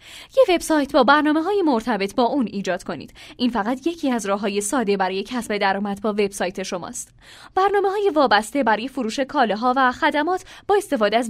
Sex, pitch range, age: female, 210-305 Hz, 10-29